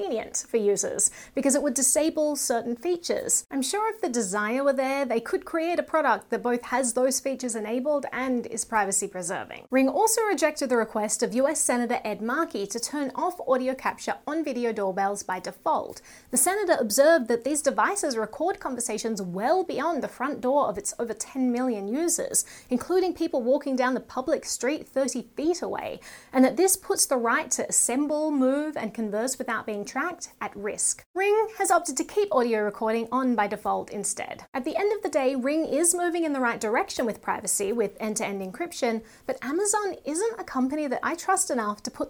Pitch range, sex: 230-325 Hz, female